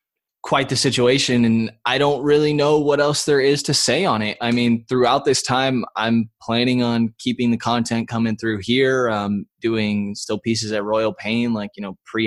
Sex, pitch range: male, 105-120 Hz